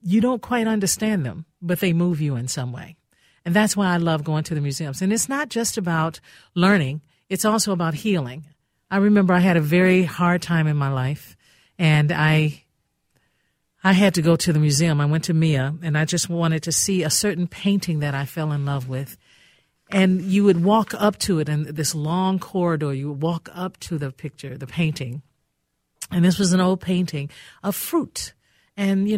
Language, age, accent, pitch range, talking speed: English, 50-69, American, 150-190 Hz, 205 wpm